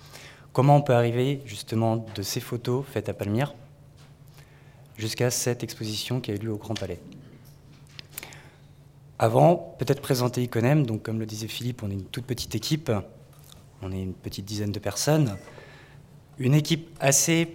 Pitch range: 110-140 Hz